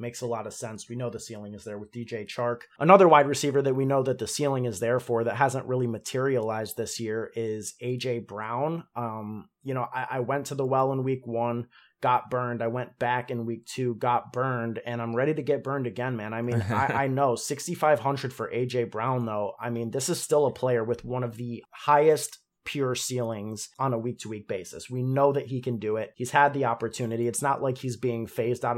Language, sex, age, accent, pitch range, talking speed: English, male, 30-49, American, 115-135 Hz, 230 wpm